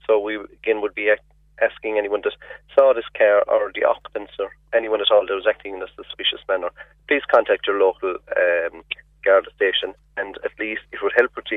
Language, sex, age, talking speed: English, male, 30-49, 205 wpm